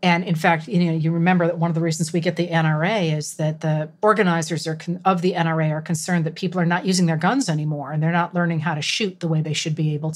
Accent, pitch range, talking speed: American, 165-200 Hz, 285 wpm